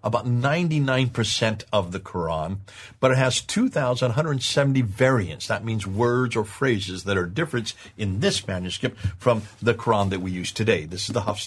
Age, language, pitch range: 50-69, English, 100-135 Hz